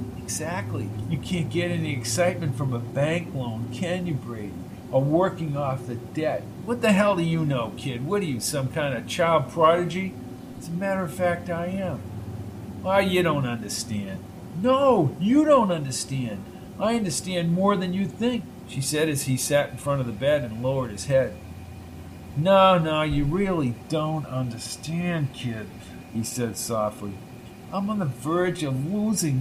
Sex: male